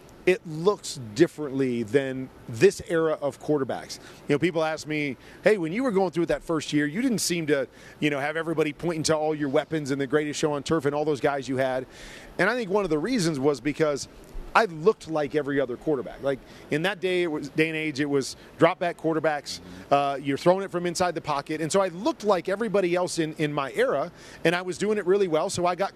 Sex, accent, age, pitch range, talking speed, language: male, American, 40-59, 145-180 Hz, 245 wpm, English